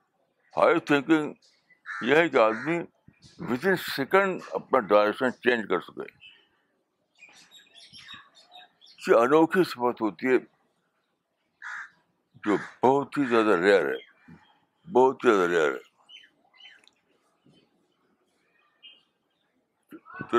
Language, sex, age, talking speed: Urdu, male, 60-79, 80 wpm